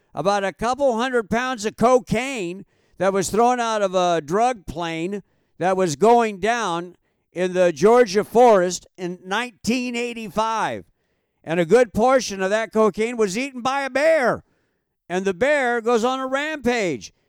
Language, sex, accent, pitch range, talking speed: English, male, American, 180-240 Hz, 155 wpm